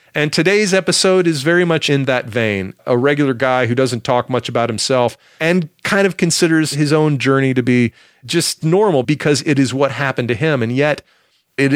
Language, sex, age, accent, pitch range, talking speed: English, male, 40-59, American, 115-160 Hz, 200 wpm